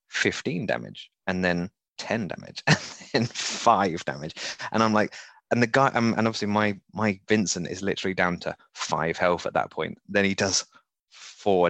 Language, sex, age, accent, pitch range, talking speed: English, male, 20-39, British, 90-115 Hz, 175 wpm